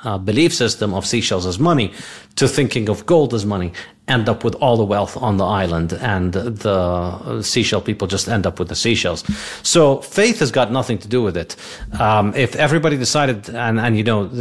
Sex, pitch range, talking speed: male, 100-125 Hz, 205 wpm